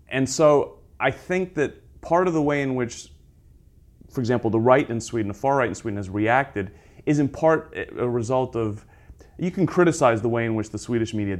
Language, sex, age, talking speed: English, male, 30-49, 210 wpm